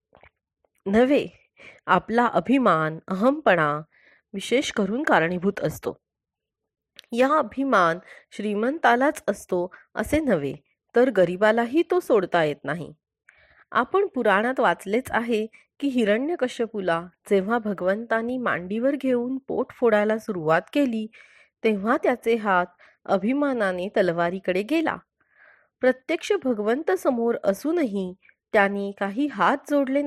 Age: 30-49